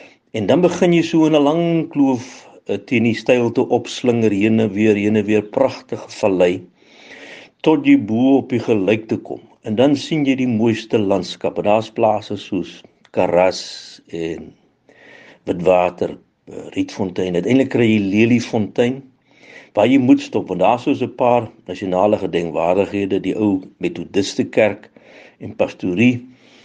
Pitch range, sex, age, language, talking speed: 105-145 Hz, male, 60-79, English, 145 wpm